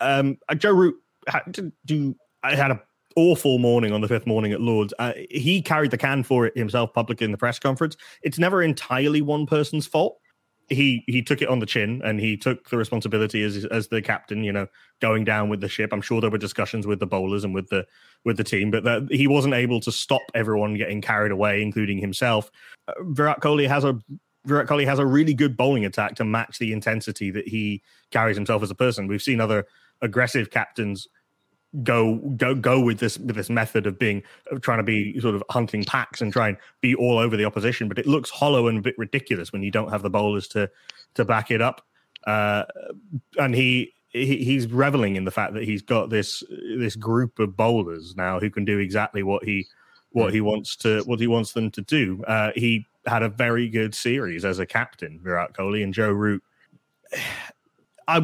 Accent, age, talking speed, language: British, 20-39, 215 wpm, English